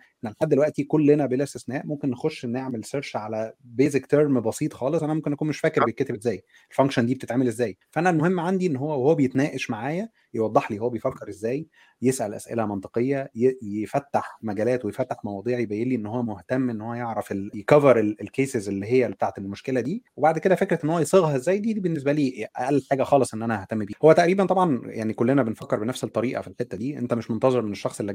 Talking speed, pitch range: 200 wpm, 110-135 Hz